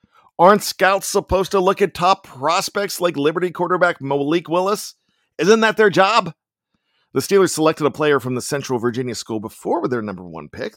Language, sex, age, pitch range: English, male, 50-69, 110-170 Hz